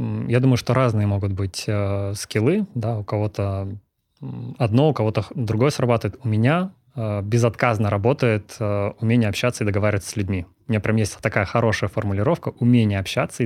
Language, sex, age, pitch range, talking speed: Russian, male, 20-39, 105-120 Hz, 165 wpm